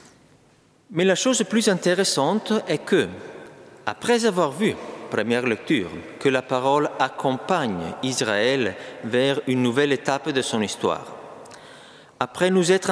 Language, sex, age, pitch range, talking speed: French, male, 50-69, 120-180 Hz, 125 wpm